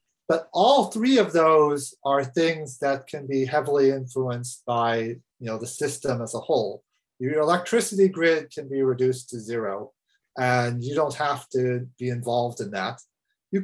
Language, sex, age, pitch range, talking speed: English, male, 30-49, 125-160 Hz, 160 wpm